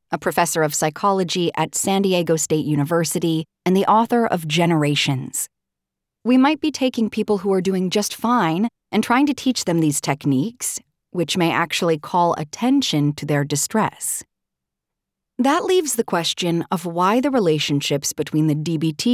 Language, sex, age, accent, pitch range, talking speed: English, female, 30-49, American, 155-220 Hz, 155 wpm